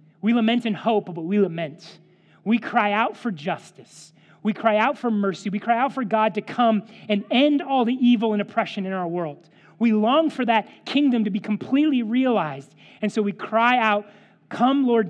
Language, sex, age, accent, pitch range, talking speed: English, male, 30-49, American, 175-225 Hz, 200 wpm